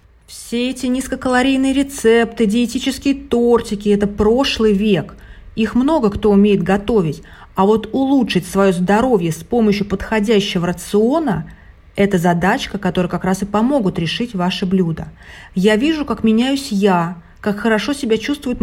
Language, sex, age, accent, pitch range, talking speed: Russian, female, 30-49, native, 180-220 Hz, 140 wpm